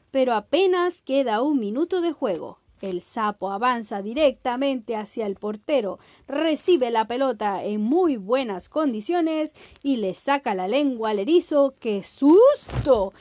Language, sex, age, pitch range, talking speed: Spanish, female, 30-49, 215-300 Hz, 135 wpm